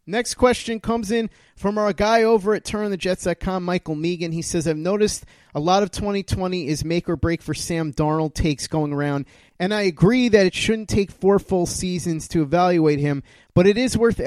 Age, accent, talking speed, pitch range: 30-49, American, 200 wpm, 145-195 Hz